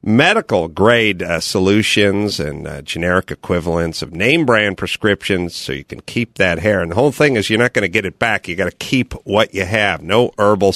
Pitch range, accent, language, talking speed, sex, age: 95-140 Hz, American, English, 215 wpm, male, 50-69